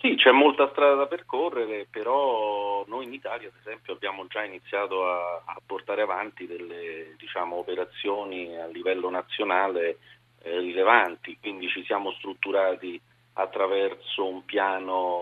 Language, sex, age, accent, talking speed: Italian, male, 40-59, native, 135 wpm